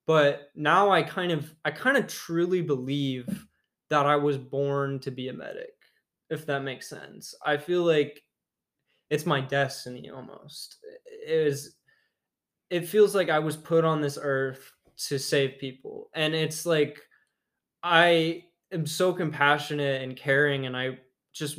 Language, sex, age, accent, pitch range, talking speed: English, male, 20-39, American, 135-155 Hz, 155 wpm